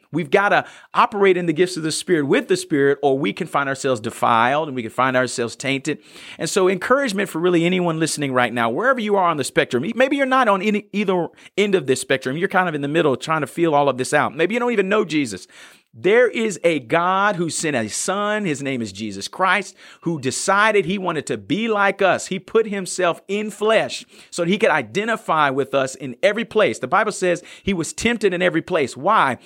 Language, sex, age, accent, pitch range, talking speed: English, male, 40-59, American, 155-205 Hz, 230 wpm